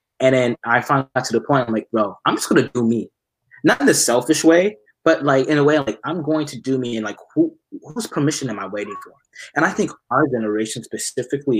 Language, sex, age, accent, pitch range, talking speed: English, male, 20-39, American, 110-165 Hz, 245 wpm